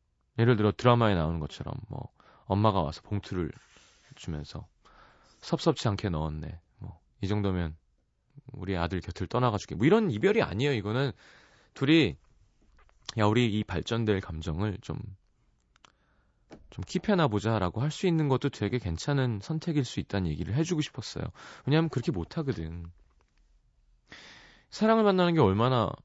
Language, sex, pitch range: Korean, male, 85-130 Hz